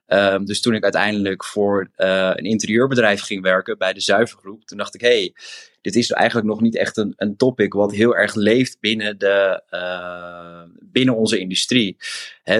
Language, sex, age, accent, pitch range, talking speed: Dutch, male, 20-39, Dutch, 95-110 Hz, 185 wpm